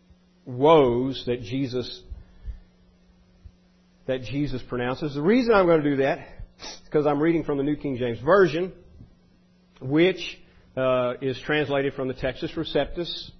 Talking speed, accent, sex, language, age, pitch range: 140 wpm, American, male, English, 40-59, 115-150 Hz